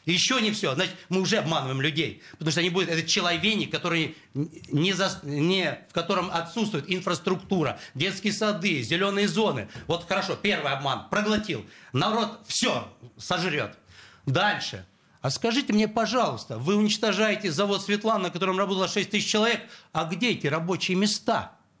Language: Russian